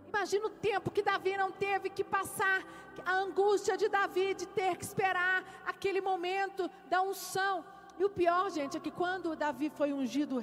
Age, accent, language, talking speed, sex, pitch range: 40-59, Brazilian, Portuguese, 180 wpm, female, 275-380 Hz